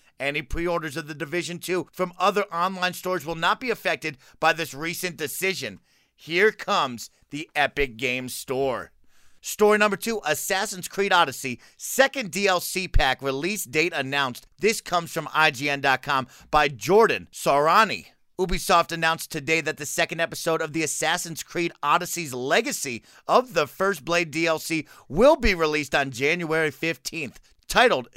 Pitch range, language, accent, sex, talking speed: 150-185 Hz, English, American, male, 145 wpm